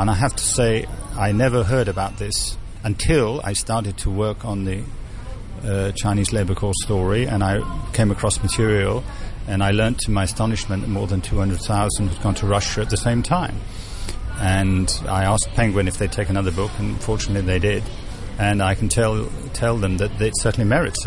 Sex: male